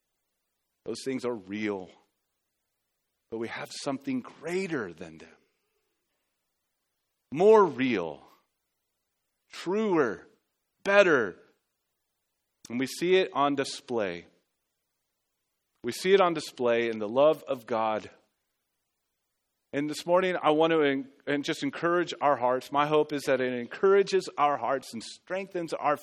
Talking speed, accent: 120 wpm, American